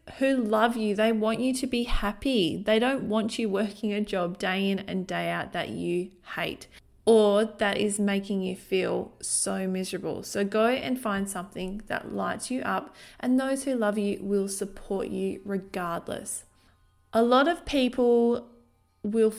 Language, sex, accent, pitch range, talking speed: English, female, Australian, 190-230 Hz, 170 wpm